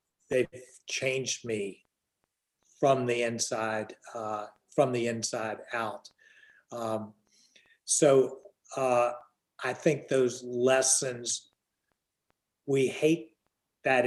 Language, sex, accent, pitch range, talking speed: English, male, American, 120-145 Hz, 90 wpm